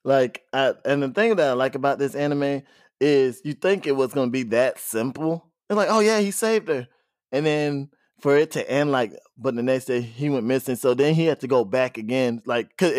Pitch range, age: 125-145 Hz, 20-39